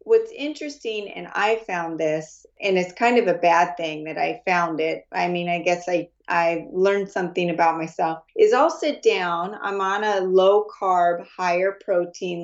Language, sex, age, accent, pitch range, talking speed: English, female, 30-49, American, 180-240 Hz, 175 wpm